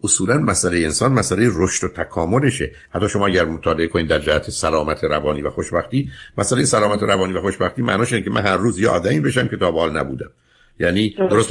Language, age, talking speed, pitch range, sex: Persian, 60-79, 190 wpm, 90-105 Hz, male